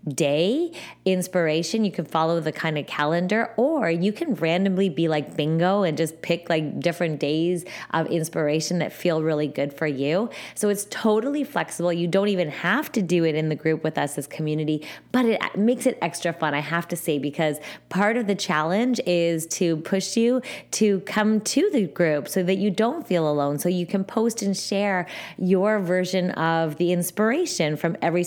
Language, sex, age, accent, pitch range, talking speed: English, female, 20-39, American, 155-195 Hz, 195 wpm